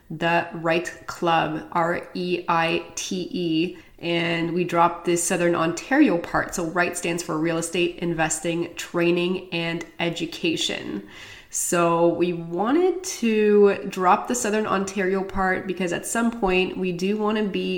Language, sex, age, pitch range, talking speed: English, female, 20-39, 165-185 Hz, 130 wpm